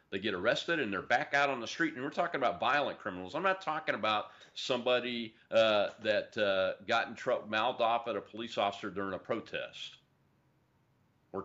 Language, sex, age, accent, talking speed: English, male, 40-59, American, 195 wpm